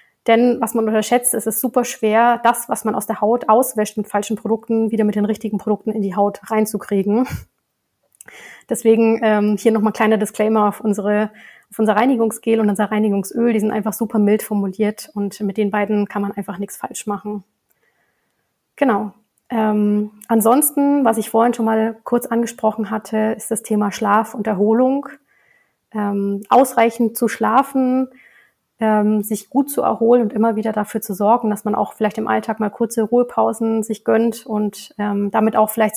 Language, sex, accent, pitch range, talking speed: German, female, German, 210-225 Hz, 175 wpm